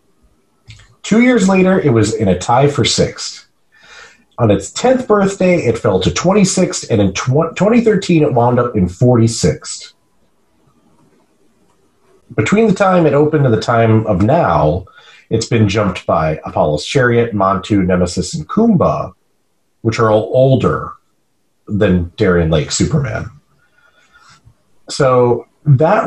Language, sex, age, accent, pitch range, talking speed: English, male, 40-59, American, 95-145 Hz, 130 wpm